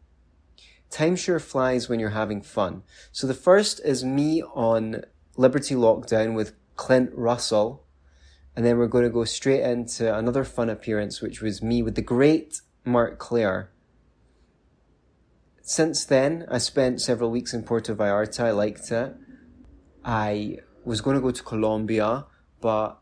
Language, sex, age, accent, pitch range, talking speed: English, male, 20-39, British, 105-130 Hz, 150 wpm